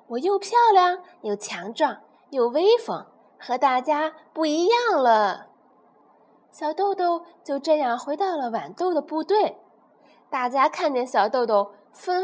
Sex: female